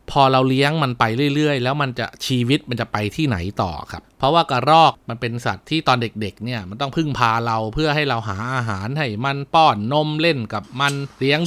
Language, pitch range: Thai, 115-145 Hz